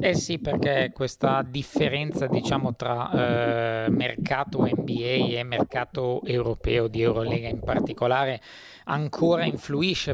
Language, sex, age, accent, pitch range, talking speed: Italian, male, 20-39, native, 125-150 Hz, 105 wpm